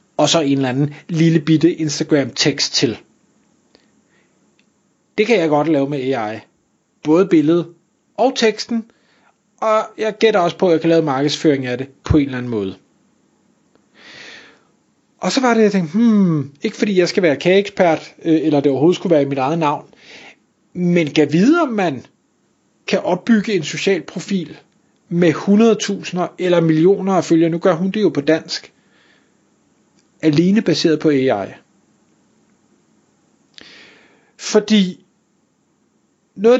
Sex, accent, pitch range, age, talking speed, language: male, native, 150-190 Hz, 30-49, 145 wpm, Danish